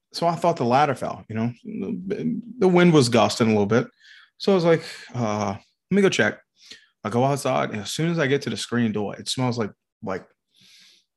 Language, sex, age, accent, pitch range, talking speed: English, male, 20-39, American, 110-135 Hz, 220 wpm